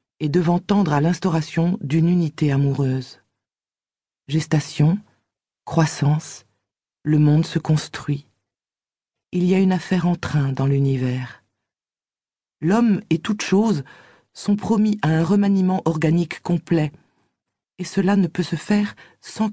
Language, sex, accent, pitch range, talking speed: French, female, French, 145-185 Hz, 125 wpm